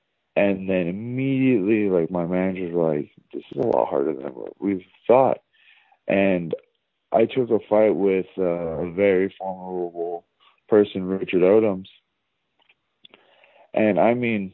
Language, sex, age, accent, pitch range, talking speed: English, male, 40-59, American, 90-105 Hz, 130 wpm